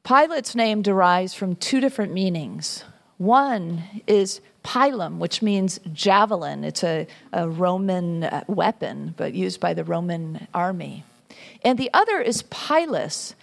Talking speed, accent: 130 wpm, American